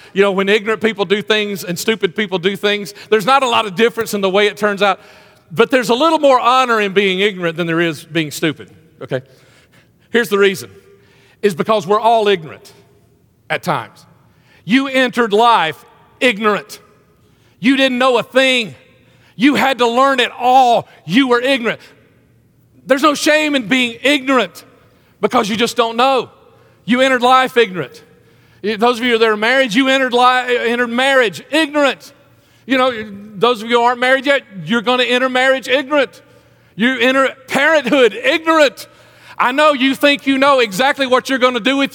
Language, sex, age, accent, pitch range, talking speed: English, male, 40-59, American, 205-270 Hz, 180 wpm